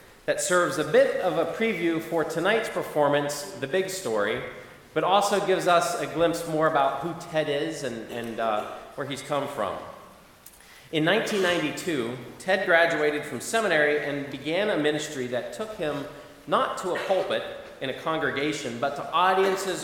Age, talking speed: 40-59, 165 wpm